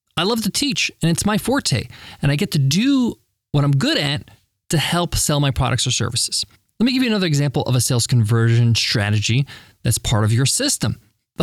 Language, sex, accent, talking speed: English, male, American, 215 wpm